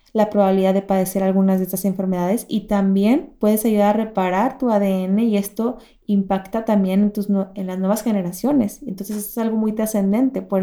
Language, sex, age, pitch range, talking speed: Spanish, female, 20-39, 200-235 Hz, 190 wpm